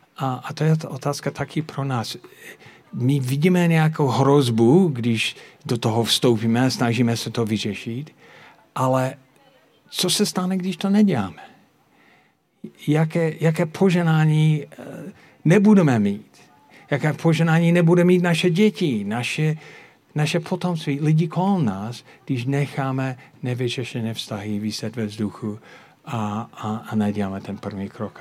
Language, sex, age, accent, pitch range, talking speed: Czech, male, 50-69, native, 110-150 Hz, 120 wpm